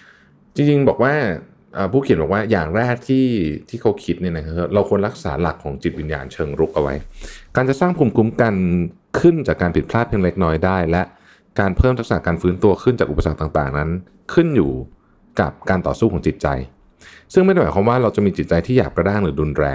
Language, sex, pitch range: Thai, male, 80-100 Hz